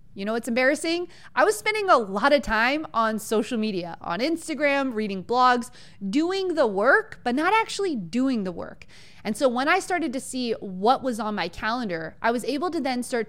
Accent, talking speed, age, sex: American, 205 wpm, 30-49, female